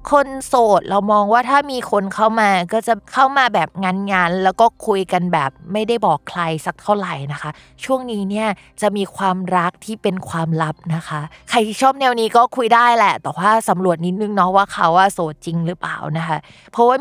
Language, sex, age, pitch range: Thai, female, 20-39, 175-230 Hz